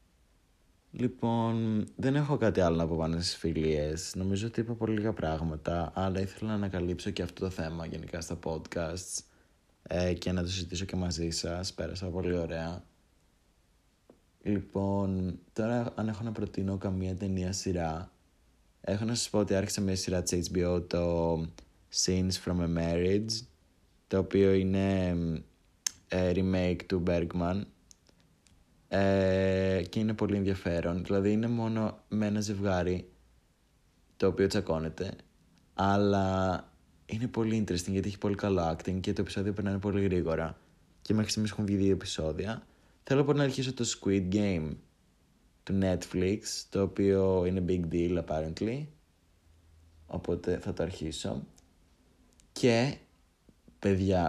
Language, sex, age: Greek, male, 20-39